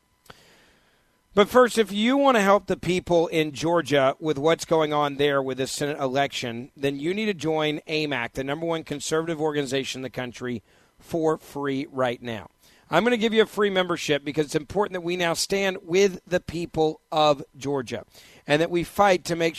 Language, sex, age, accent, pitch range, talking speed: English, male, 40-59, American, 140-175 Hz, 195 wpm